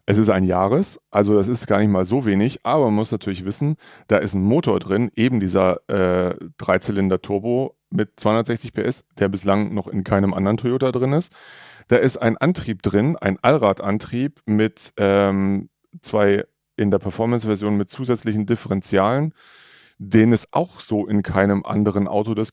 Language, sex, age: German, male, 30-49